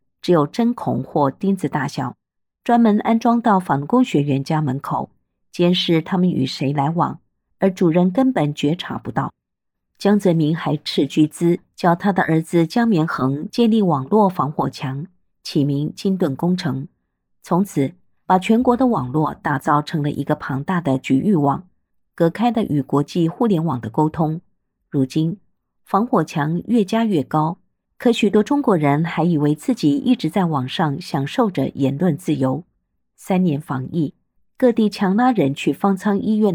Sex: female